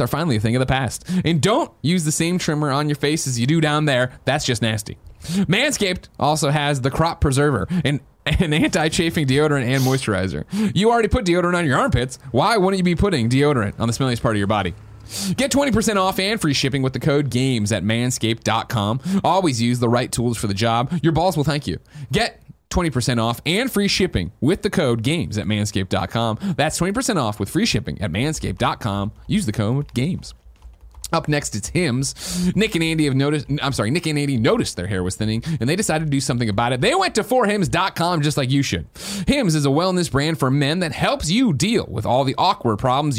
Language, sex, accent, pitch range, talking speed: English, male, American, 115-165 Hz, 215 wpm